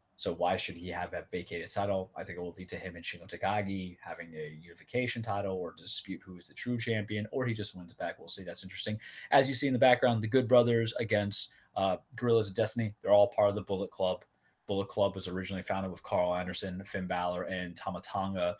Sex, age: male, 30-49